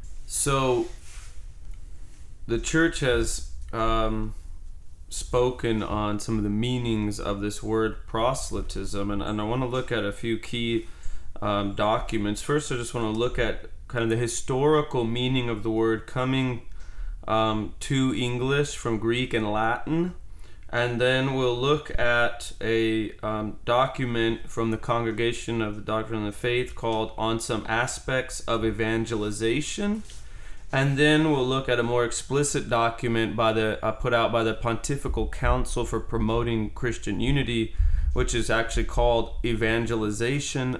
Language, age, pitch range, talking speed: English, 20-39, 105-125 Hz, 145 wpm